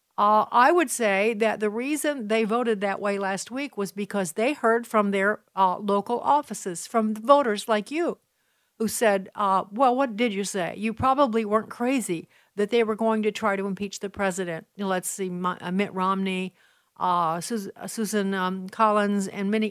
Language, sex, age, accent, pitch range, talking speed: English, female, 60-79, American, 195-220 Hz, 175 wpm